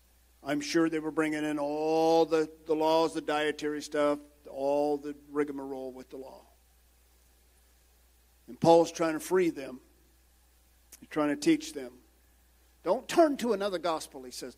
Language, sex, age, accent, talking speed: English, male, 50-69, American, 150 wpm